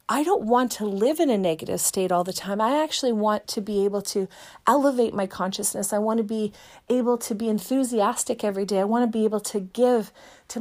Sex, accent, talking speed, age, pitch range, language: female, American, 225 wpm, 30-49, 205-255 Hz, English